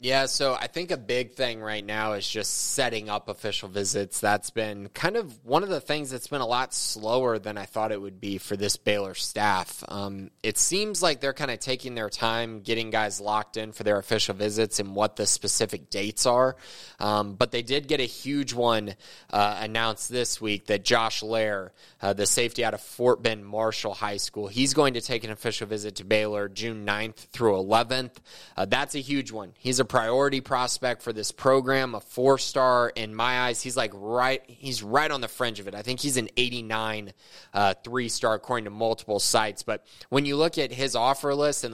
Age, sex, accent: 20-39, male, American